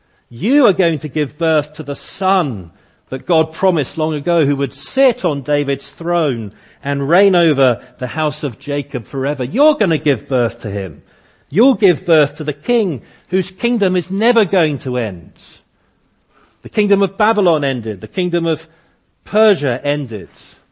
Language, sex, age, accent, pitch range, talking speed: English, male, 40-59, British, 120-175 Hz, 170 wpm